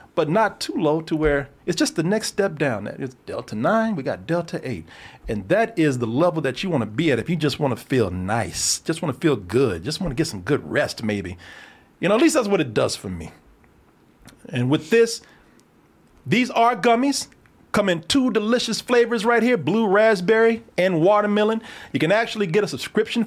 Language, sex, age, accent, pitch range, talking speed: English, male, 40-59, American, 130-205 Hz, 215 wpm